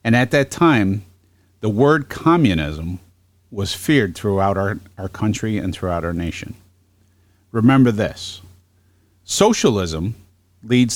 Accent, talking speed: American, 115 wpm